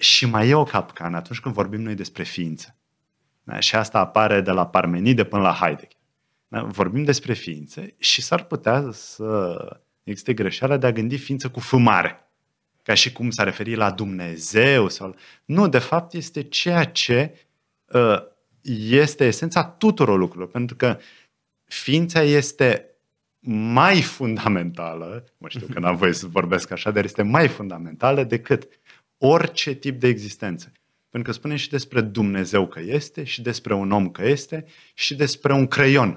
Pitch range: 105-145 Hz